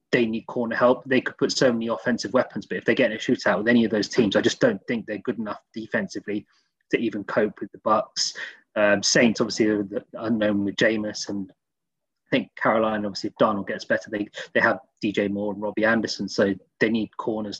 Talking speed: 225 wpm